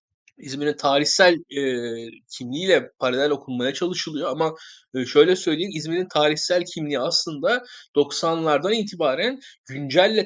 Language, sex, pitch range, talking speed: Turkish, male, 145-175 Hz, 105 wpm